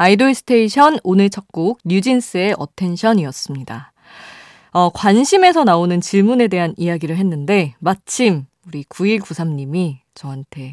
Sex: female